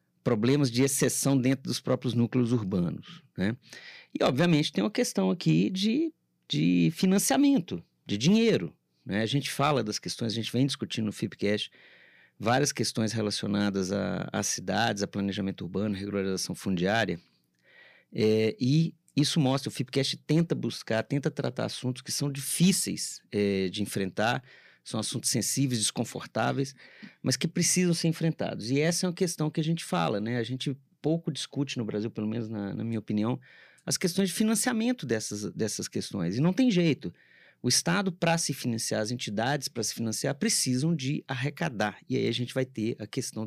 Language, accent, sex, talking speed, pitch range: Portuguese, Brazilian, male, 165 wpm, 110-160 Hz